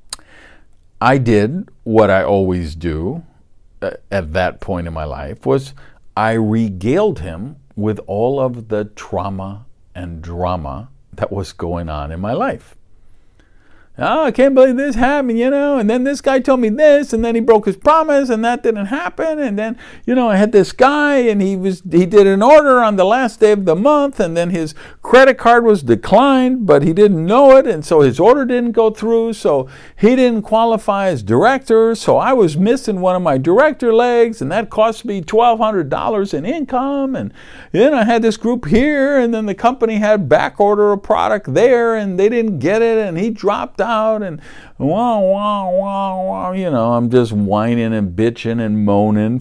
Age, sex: 50-69, male